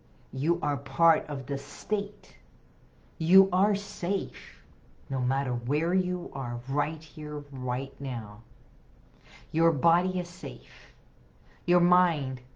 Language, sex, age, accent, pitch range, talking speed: English, female, 50-69, American, 130-180 Hz, 115 wpm